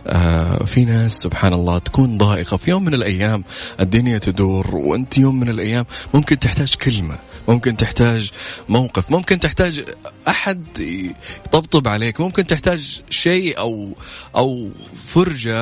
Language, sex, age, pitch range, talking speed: Arabic, male, 30-49, 90-120 Hz, 125 wpm